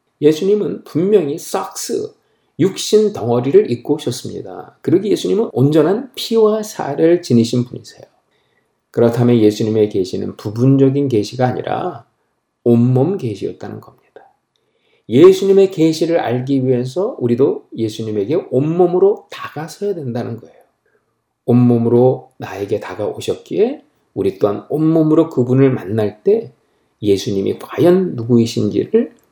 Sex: male